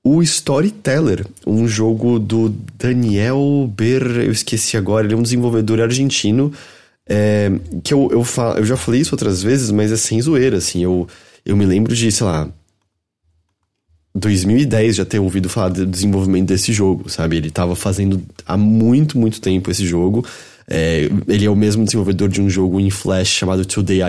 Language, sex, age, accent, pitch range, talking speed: Portuguese, male, 20-39, Brazilian, 95-125 Hz, 175 wpm